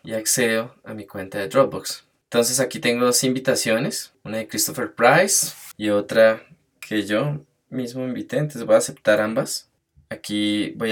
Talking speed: 160 wpm